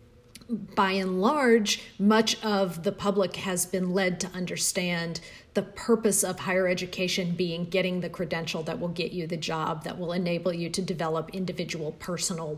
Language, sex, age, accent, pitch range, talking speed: English, female, 40-59, American, 175-215 Hz, 165 wpm